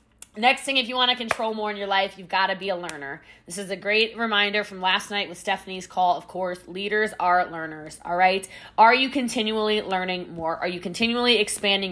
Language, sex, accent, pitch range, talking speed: English, female, American, 185-230 Hz, 220 wpm